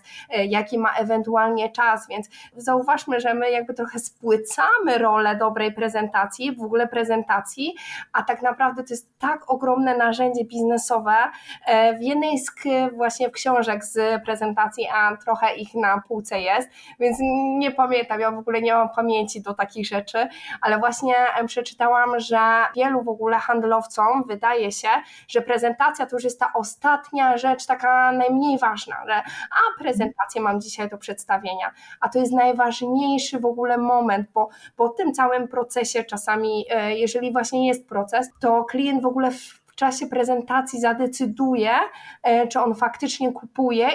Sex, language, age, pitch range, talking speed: female, Polish, 20-39, 225-255 Hz, 150 wpm